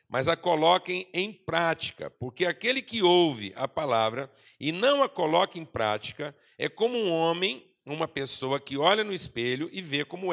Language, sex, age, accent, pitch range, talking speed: Portuguese, male, 60-79, Brazilian, 140-180 Hz, 175 wpm